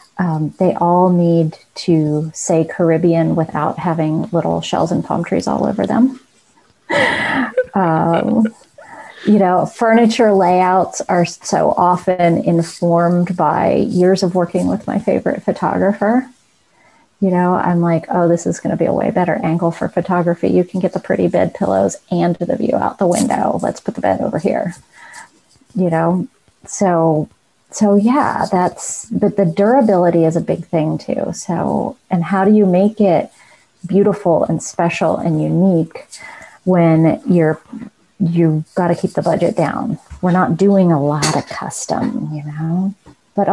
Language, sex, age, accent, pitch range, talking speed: English, female, 30-49, American, 165-205 Hz, 155 wpm